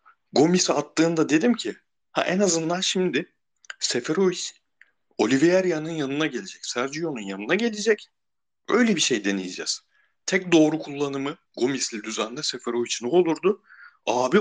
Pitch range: 125-195 Hz